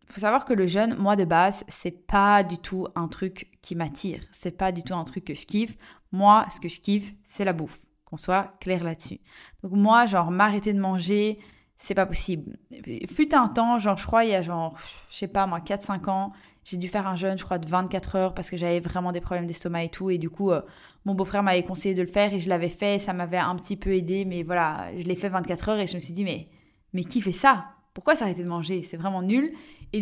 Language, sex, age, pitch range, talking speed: French, female, 20-39, 180-210 Hz, 260 wpm